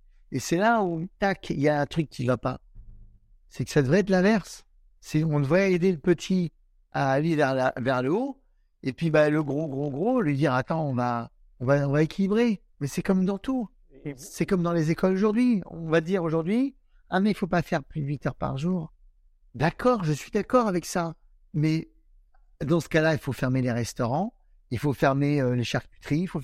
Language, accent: French, French